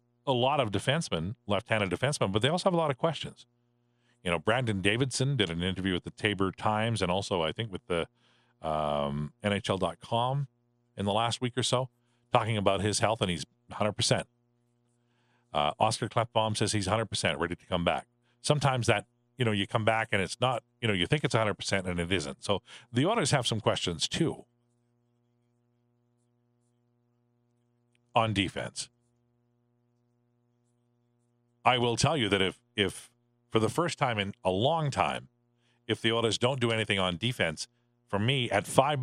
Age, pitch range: 40-59, 105-120 Hz